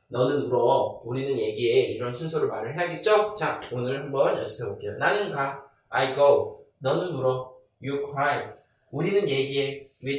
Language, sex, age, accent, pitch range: Korean, male, 20-39, native, 130-190 Hz